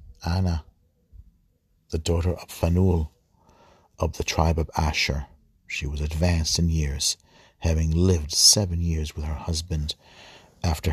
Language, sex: English, male